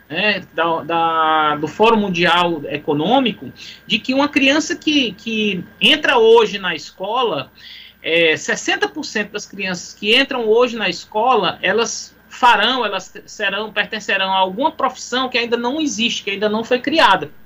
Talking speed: 135 wpm